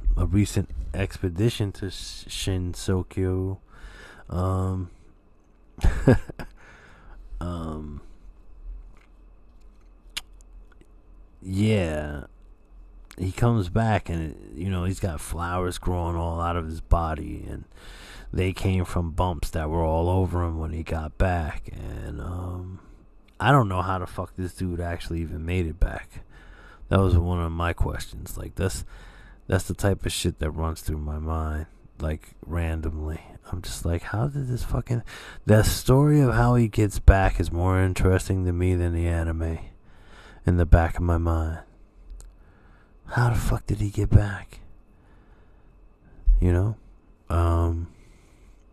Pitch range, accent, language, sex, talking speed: 80-100 Hz, American, English, male, 135 wpm